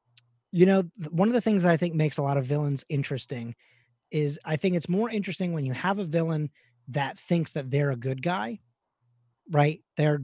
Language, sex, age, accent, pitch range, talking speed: English, male, 30-49, American, 135-165 Hz, 200 wpm